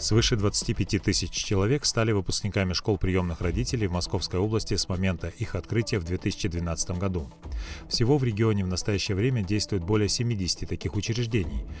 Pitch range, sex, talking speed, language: 90-110 Hz, male, 155 wpm, Russian